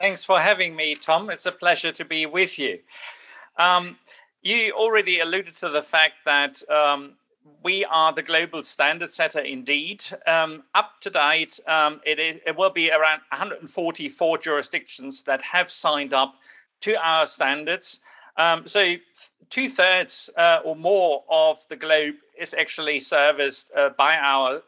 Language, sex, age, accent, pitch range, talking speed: English, male, 50-69, British, 150-175 Hz, 155 wpm